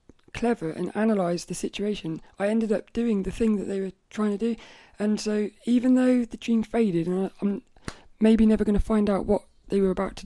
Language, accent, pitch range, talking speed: English, British, 195-225 Hz, 215 wpm